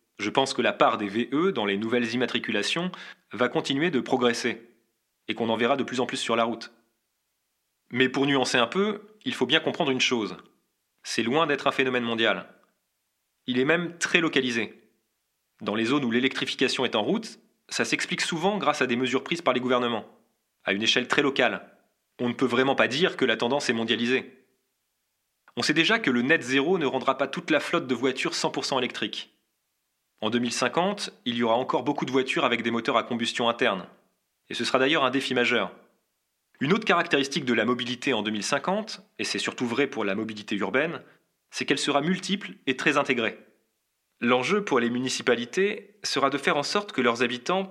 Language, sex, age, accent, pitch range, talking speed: French, male, 30-49, French, 120-145 Hz, 195 wpm